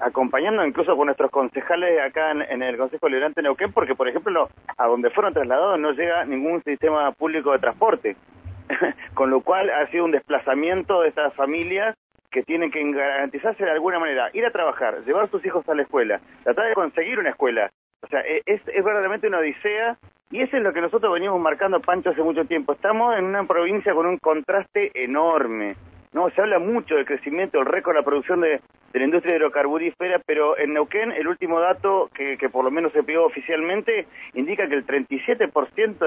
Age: 40-59